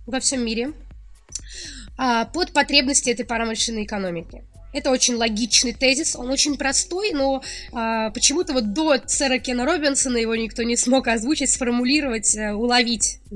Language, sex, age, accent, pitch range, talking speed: Russian, female, 20-39, native, 225-270 Hz, 130 wpm